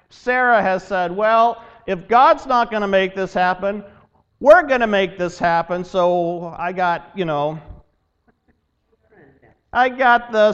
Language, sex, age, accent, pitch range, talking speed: English, male, 50-69, American, 155-220 Hz, 150 wpm